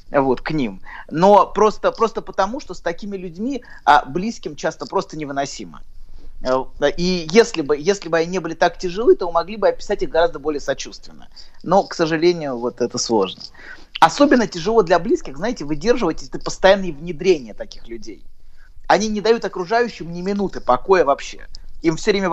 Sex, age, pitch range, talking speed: male, 30-49, 160-200 Hz, 165 wpm